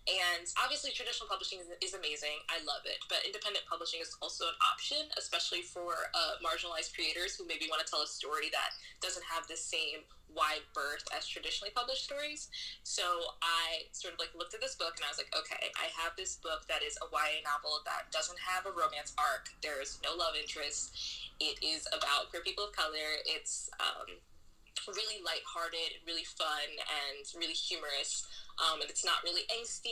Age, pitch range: 10-29, 160-250 Hz